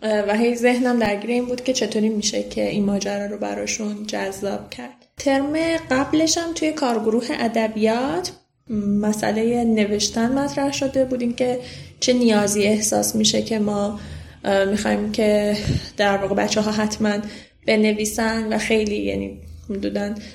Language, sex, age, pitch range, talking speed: Persian, female, 10-29, 200-235 Hz, 135 wpm